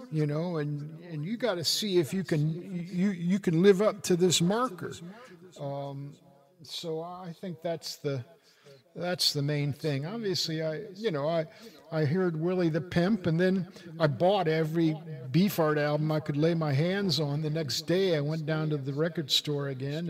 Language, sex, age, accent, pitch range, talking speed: English, male, 50-69, American, 140-170 Hz, 190 wpm